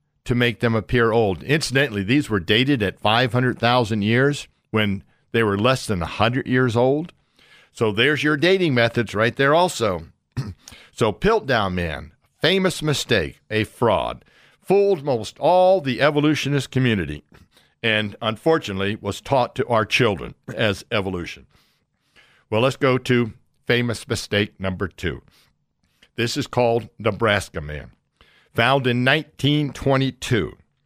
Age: 60-79